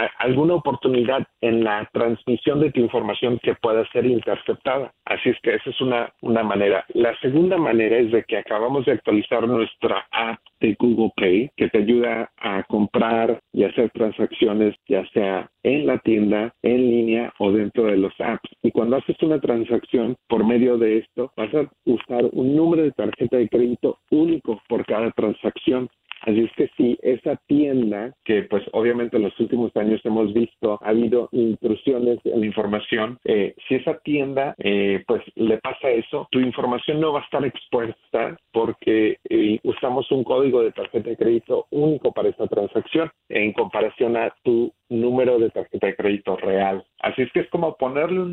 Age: 50-69